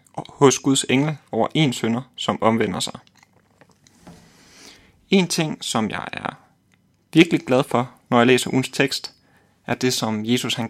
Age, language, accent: 30-49, Danish, native